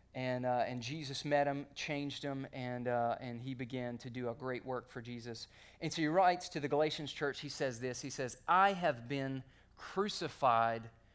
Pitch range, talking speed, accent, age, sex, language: 125-160 Hz, 200 wpm, American, 30-49, male, English